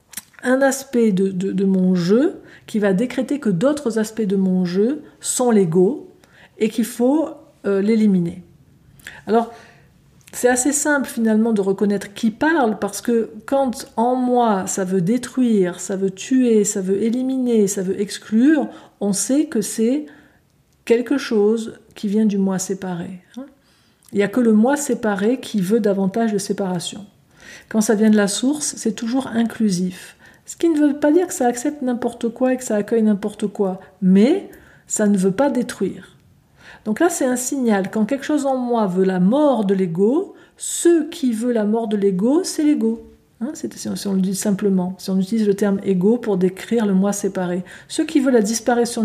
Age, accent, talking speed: 50-69, French, 185 wpm